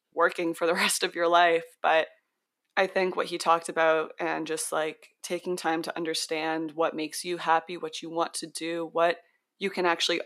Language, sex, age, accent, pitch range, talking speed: English, female, 20-39, American, 160-185 Hz, 200 wpm